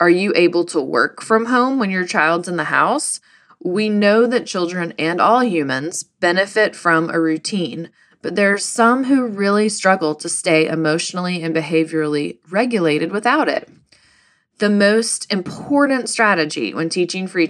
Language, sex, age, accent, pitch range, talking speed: English, female, 20-39, American, 160-205 Hz, 160 wpm